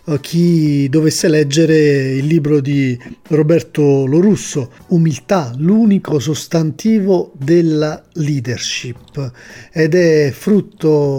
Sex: male